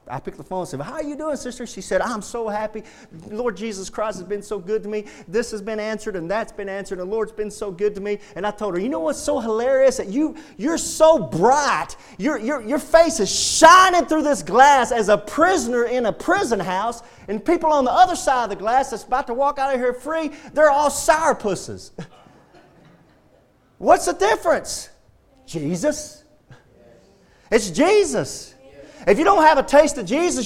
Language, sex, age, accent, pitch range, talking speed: English, male, 40-59, American, 215-295 Hz, 205 wpm